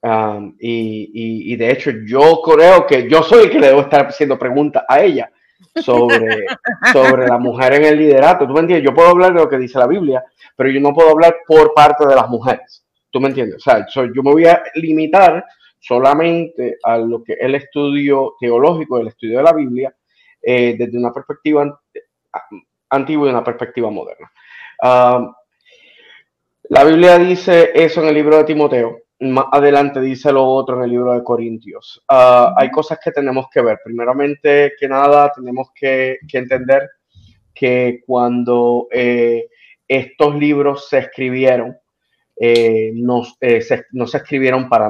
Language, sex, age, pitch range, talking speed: Spanish, male, 30-49, 125-150 Hz, 165 wpm